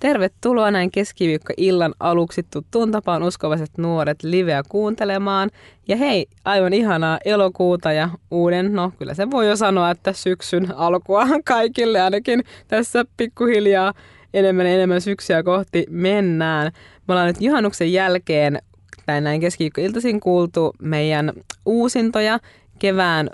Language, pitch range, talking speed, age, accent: Finnish, 155-190 Hz, 125 wpm, 20-39, native